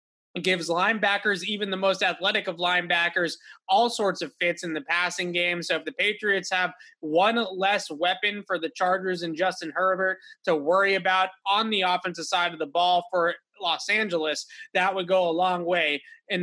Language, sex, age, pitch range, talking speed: English, male, 20-39, 170-205 Hz, 185 wpm